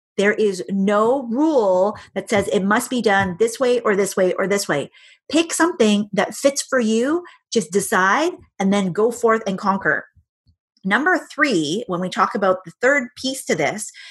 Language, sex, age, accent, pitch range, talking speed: English, female, 30-49, American, 190-235 Hz, 185 wpm